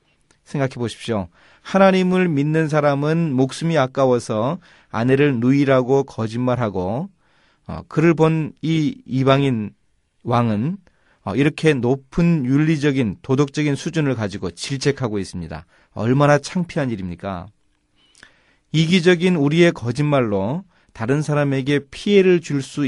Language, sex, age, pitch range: Korean, male, 30-49, 110-150 Hz